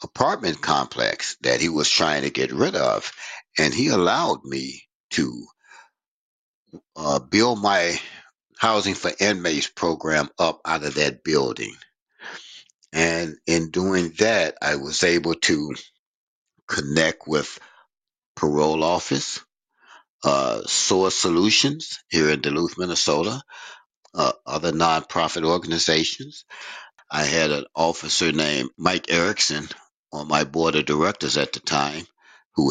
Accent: American